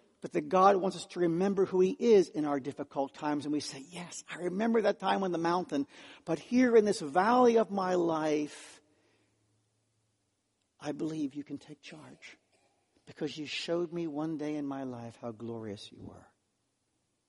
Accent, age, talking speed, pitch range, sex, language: American, 60-79, 180 wpm, 140-235 Hz, male, English